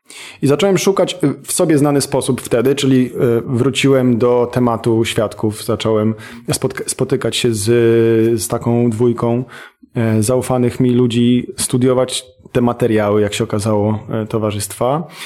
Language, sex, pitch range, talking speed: Polish, male, 115-150 Hz, 120 wpm